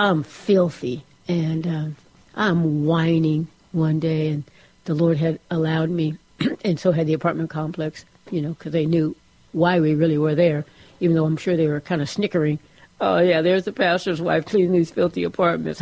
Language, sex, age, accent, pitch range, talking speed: English, female, 60-79, American, 160-190 Hz, 185 wpm